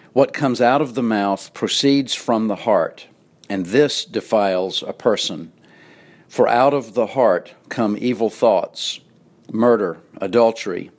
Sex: male